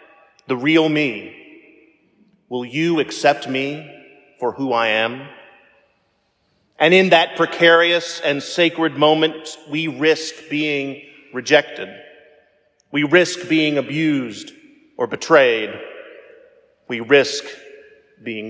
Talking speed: 100 wpm